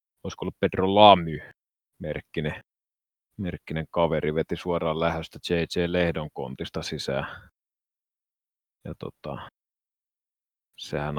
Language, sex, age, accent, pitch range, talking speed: Finnish, male, 30-49, native, 80-95 Hz, 80 wpm